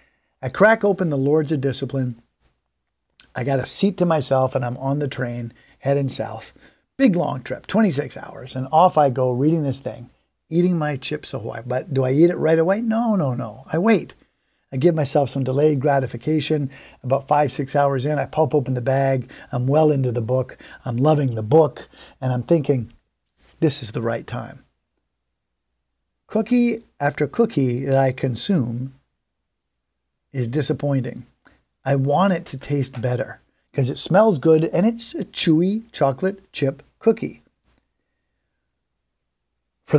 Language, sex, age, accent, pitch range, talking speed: English, male, 50-69, American, 120-160 Hz, 160 wpm